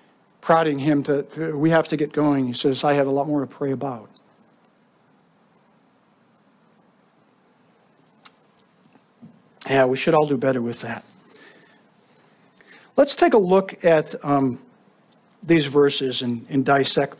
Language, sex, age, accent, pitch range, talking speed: English, male, 60-79, American, 140-205 Hz, 135 wpm